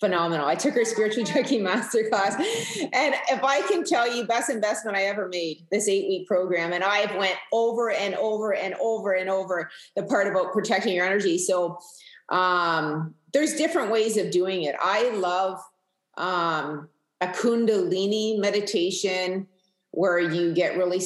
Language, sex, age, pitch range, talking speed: English, female, 30-49, 180-220 Hz, 160 wpm